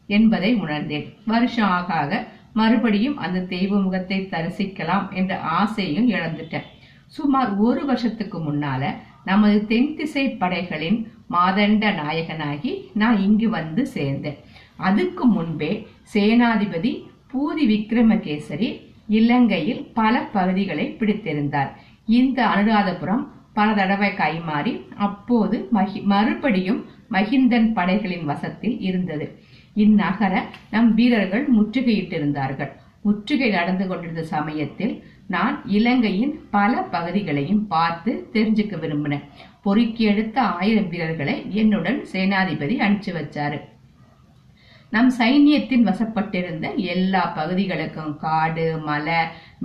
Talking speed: 90 wpm